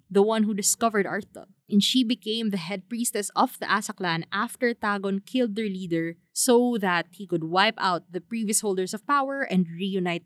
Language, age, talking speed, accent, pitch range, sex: English, 20-39, 185 wpm, Filipino, 185-240 Hz, female